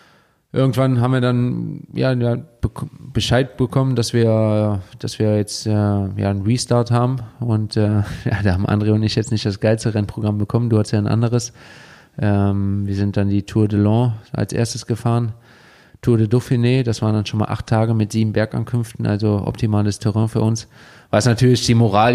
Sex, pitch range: male, 105-120 Hz